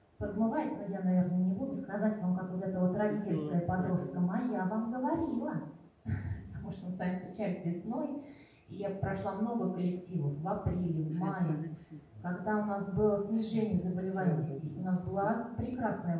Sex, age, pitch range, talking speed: female, 20-39, 160-190 Hz, 155 wpm